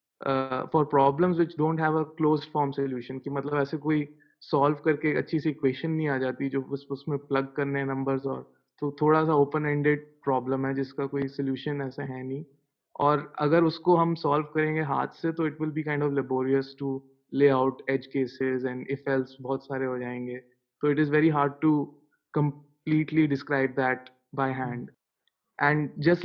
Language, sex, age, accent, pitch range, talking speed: Hindi, male, 20-39, native, 135-155 Hz, 190 wpm